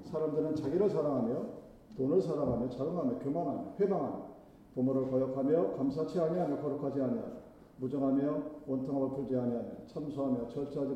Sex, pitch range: male, 135-195 Hz